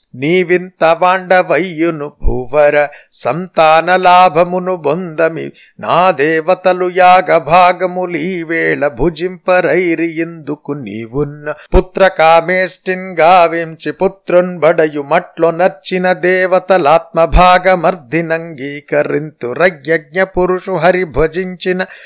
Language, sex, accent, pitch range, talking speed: Telugu, male, native, 160-185 Hz, 45 wpm